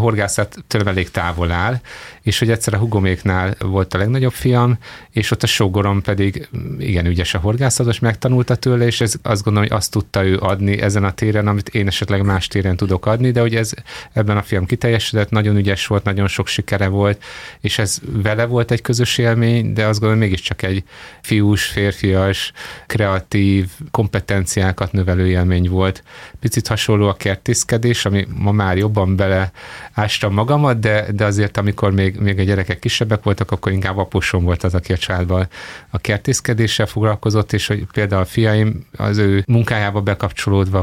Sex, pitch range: male, 95-110 Hz